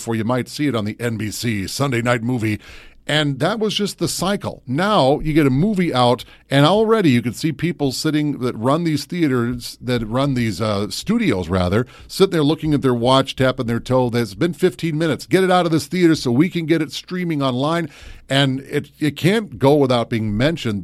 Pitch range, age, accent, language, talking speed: 115-155 Hz, 40-59, American, English, 215 wpm